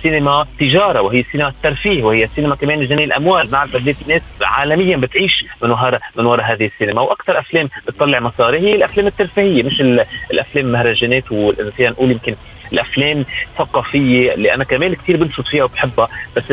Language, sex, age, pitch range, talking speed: Arabic, male, 30-49, 125-170 Hz, 160 wpm